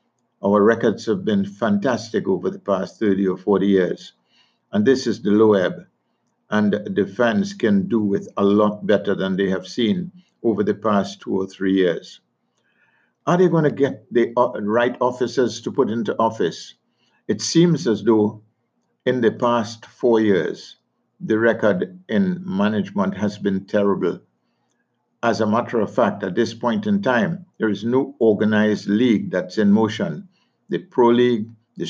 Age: 50-69